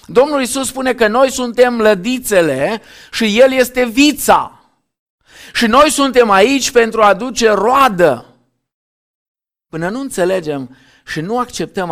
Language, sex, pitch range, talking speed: Romanian, male, 145-225 Hz, 125 wpm